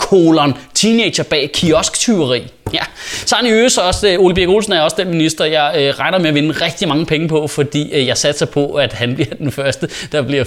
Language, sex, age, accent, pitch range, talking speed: Danish, male, 20-39, native, 145-205 Hz, 235 wpm